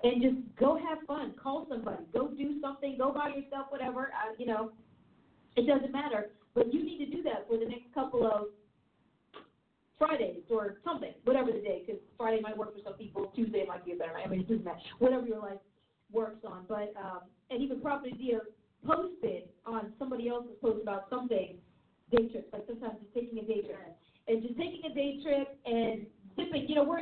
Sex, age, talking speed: female, 40-59, 215 wpm